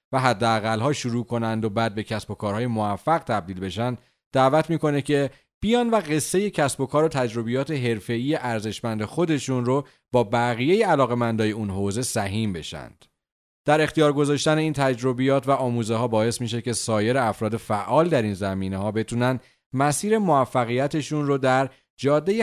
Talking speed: 165 wpm